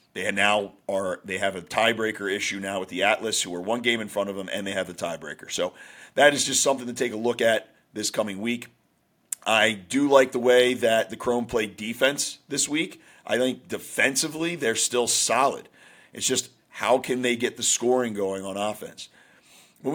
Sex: male